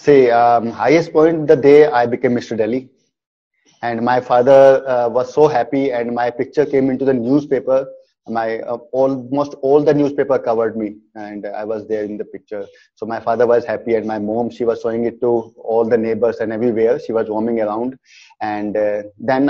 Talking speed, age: 205 wpm, 20-39